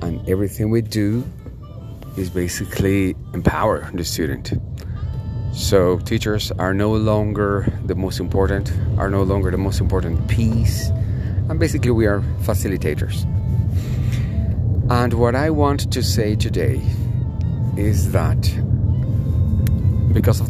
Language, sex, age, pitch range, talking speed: English, male, 30-49, 95-115 Hz, 115 wpm